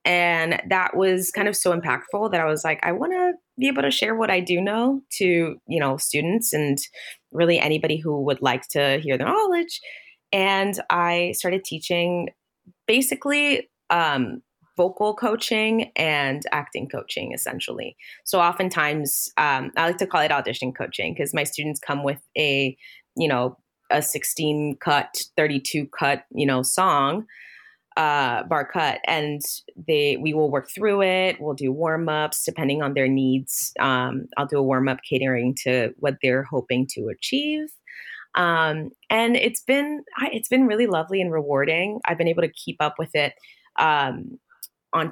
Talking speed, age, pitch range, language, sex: 165 wpm, 20-39, 140-195 Hz, English, female